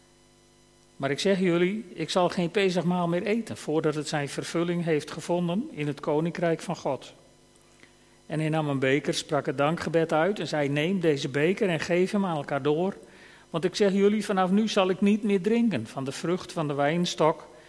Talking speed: 195 wpm